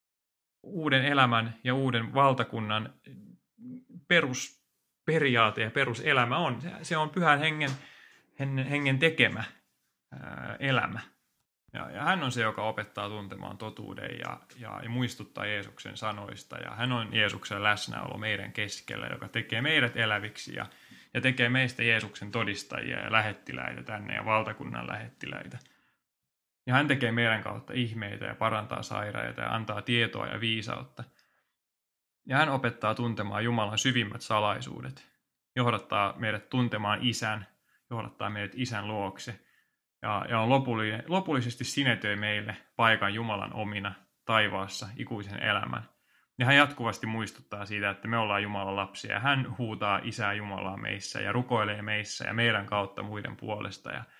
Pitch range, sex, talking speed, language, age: 105-125 Hz, male, 130 wpm, Finnish, 30-49